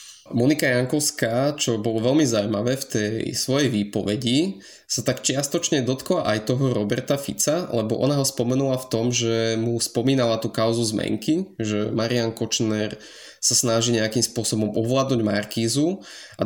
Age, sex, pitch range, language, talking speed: 20-39, male, 105-125 Hz, Slovak, 145 wpm